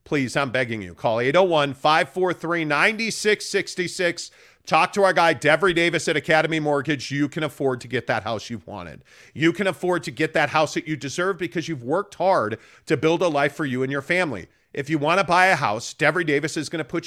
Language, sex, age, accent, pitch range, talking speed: English, male, 40-59, American, 145-185 Hz, 205 wpm